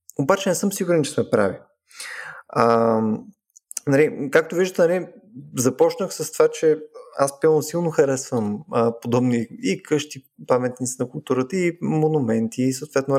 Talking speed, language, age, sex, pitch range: 140 wpm, Bulgarian, 20-39, male, 120-185 Hz